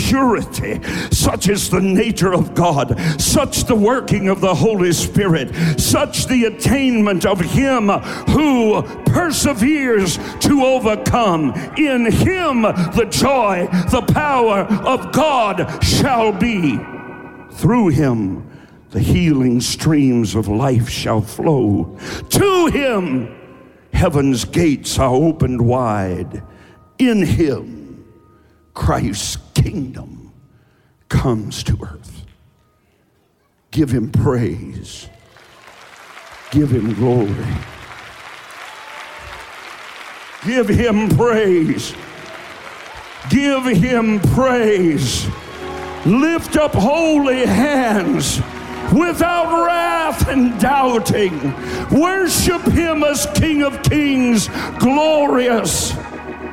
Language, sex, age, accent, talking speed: English, male, 60-79, American, 85 wpm